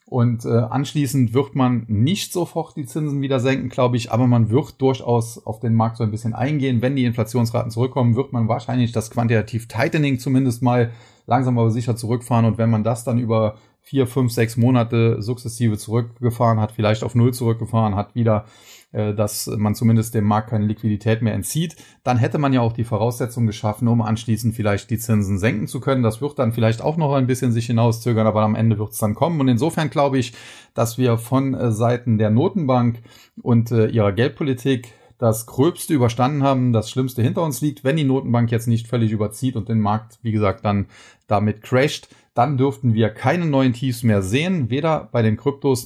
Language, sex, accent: German, male, German